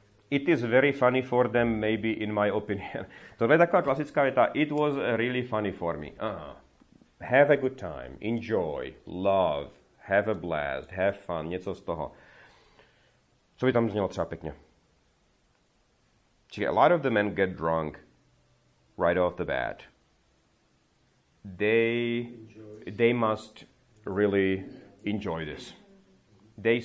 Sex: male